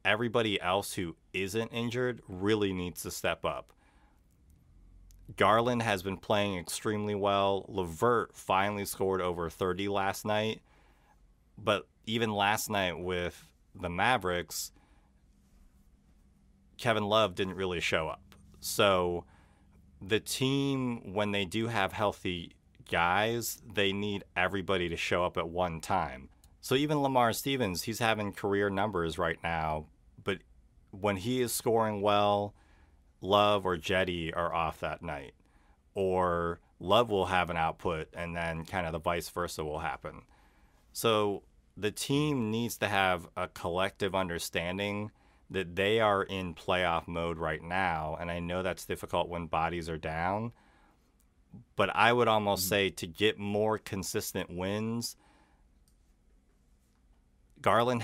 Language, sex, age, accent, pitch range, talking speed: English, male, 30-49, American, 80-105 Hz, 130 wpm